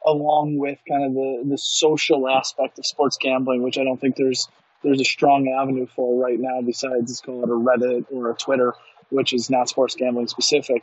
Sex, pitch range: male, 130-145 Hz